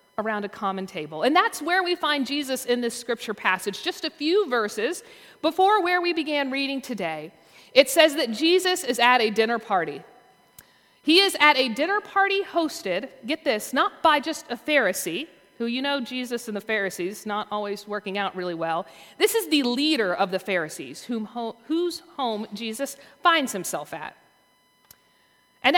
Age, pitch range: 40-59, 220-335 Hz